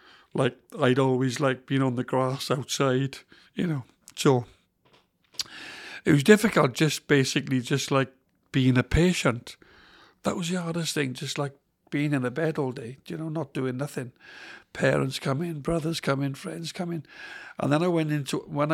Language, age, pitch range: English, 60-79, 130-160 Hz